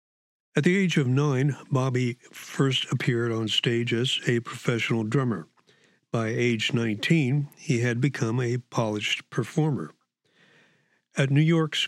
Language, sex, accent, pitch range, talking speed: English, male, American, 115-145 Hz, 130 wpm